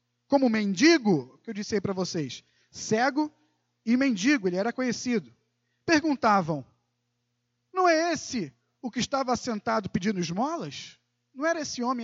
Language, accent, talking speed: Portuguese, Brazilian, 140 wpm